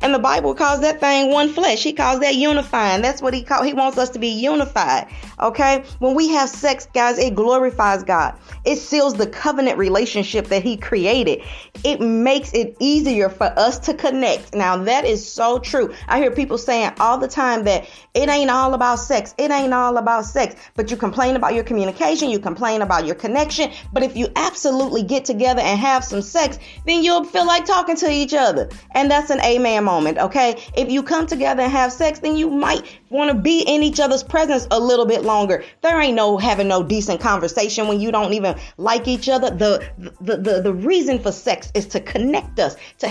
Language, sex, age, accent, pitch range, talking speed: English, female, 40-59, American, 215-285 Hz, 210 wpm